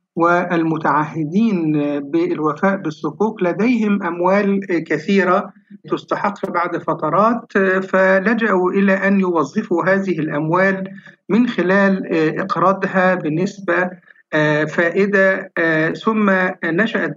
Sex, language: male, Arabic